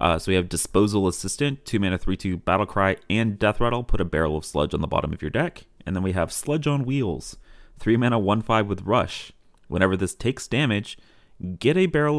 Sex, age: male, 30-49